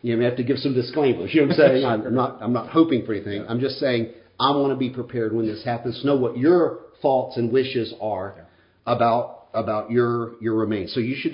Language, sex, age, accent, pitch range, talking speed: English, male, 50-69, American, 110-130 Hz, 245 wpm